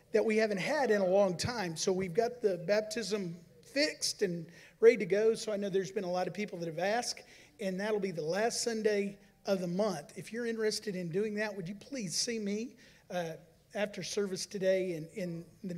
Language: English